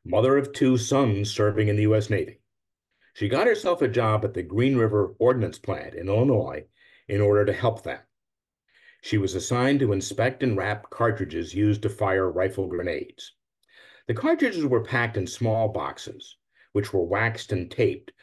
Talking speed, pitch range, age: 170 wpm, 105-130 Hz, 50-69